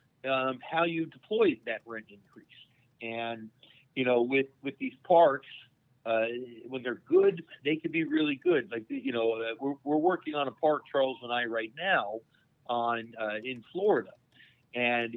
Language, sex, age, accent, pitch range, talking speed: English, male, 50-69, American, 115-165 Hz, 165 wpm